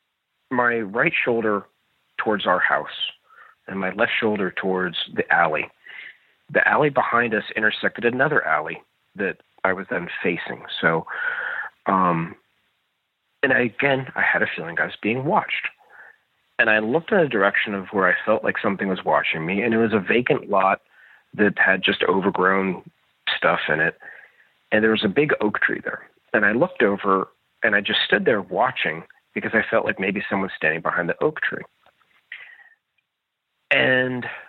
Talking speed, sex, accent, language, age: 170 wpm, male, American, English, 40-59